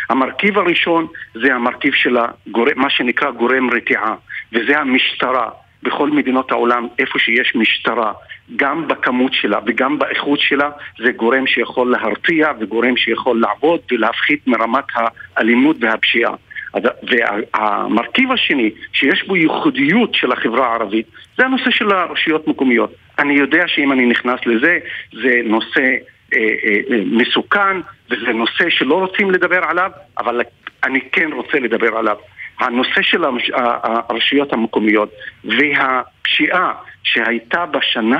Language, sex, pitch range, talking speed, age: Hebrew, male, 120-180 Hz, 125 wpm, 50-69